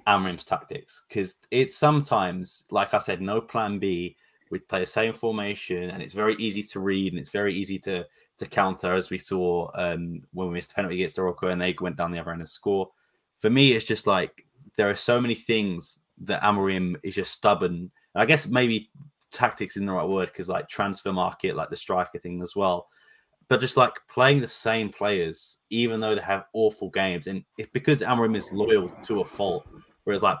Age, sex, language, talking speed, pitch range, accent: 20-39, male, English, 210 wpm, 95-110 Hz, British